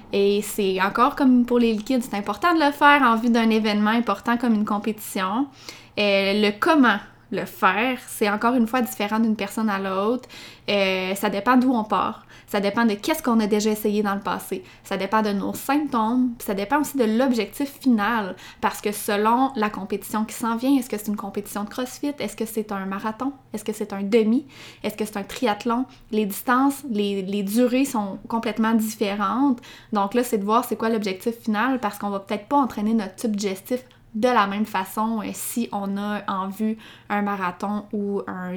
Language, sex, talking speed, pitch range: French, female, 205 wpm, 200-240 Hz